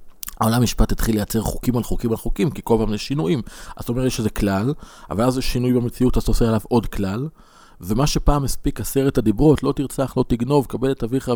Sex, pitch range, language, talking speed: male, 105-140 Hz, Hebrew, 225 wpm